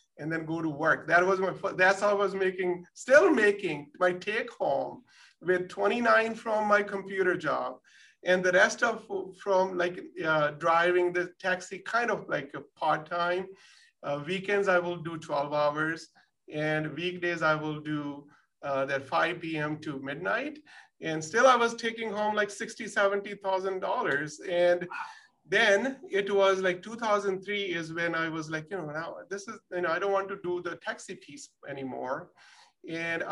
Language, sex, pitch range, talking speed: English, male, 160-195 Hz, 180 wpm